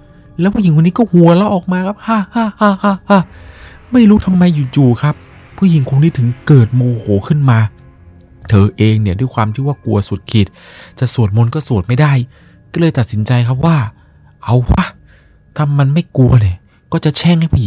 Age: 20-39